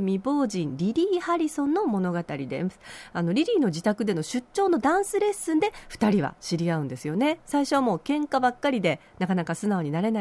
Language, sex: Japanese, female